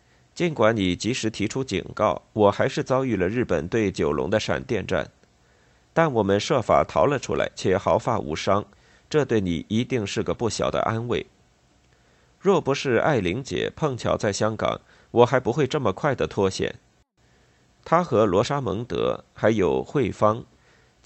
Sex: male